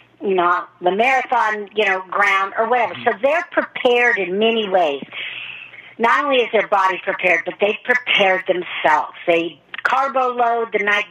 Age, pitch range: 50-69, 185-255 Hz